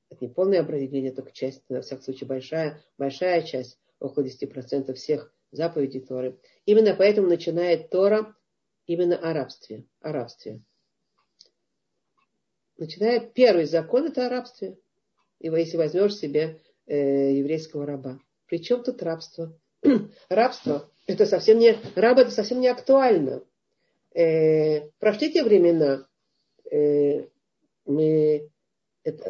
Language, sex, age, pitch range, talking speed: Russian, female, 50-69, 140-185 Hz, 115 wpm